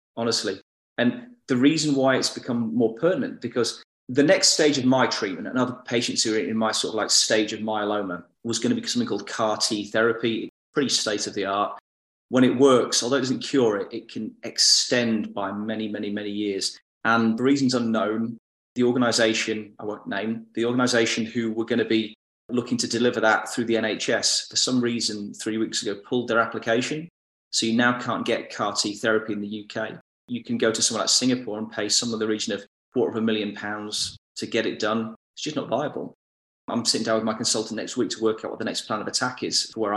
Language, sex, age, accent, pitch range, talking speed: English, male, 30-49, British, 105-120 Hz, 225 wpm